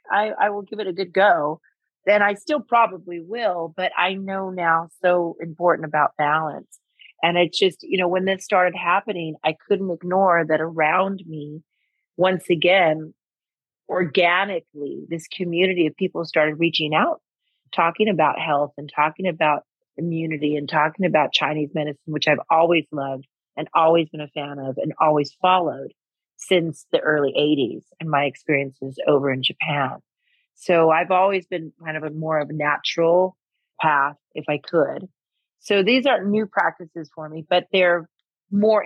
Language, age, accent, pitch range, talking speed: English, 30-49, American, 155-185 Hz, 165 wpm